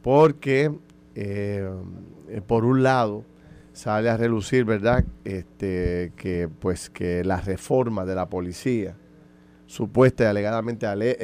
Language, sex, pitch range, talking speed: Spanish, male, 100-130 Hz, 100 wpm